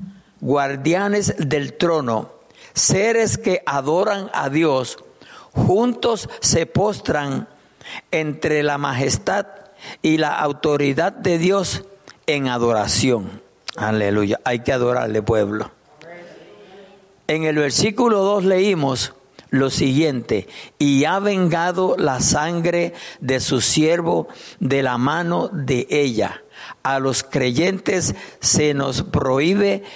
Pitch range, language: 130-175 Hz, Spanish